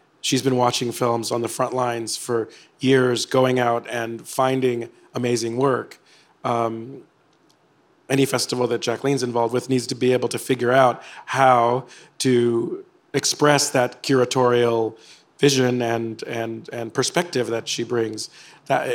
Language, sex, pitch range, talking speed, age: English, male, 120-130 Hz, 145 wpm, 40-59